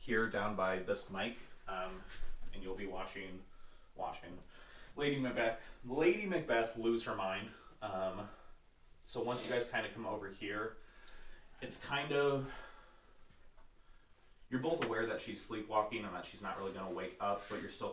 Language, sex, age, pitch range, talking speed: English, male, 20-39, 95-120 Hz, 165 wpm